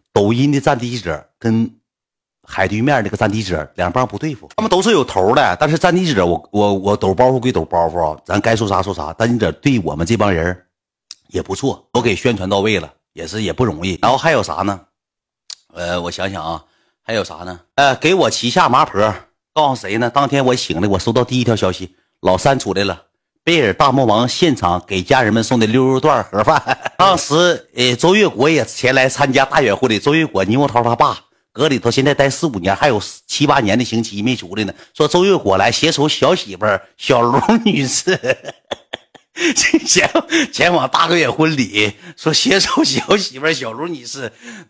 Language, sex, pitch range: Chinese, male, 110-180 Hz